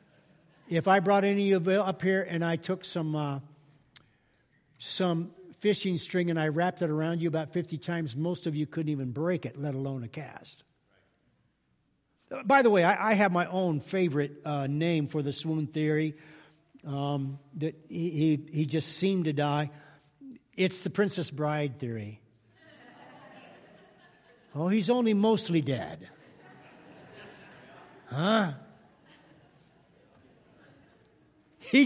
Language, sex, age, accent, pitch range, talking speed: English, male, 60-79, American, 145-185 Hz, 140 wpm